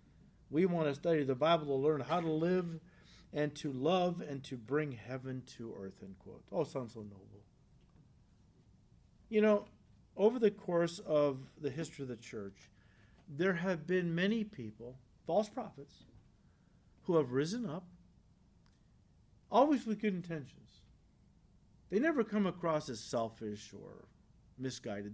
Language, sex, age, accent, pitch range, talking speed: English, male, 50-69, American, 115-165 Hz, 145 wpm